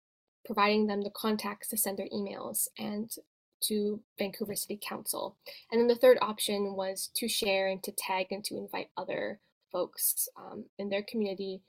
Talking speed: 170 wpm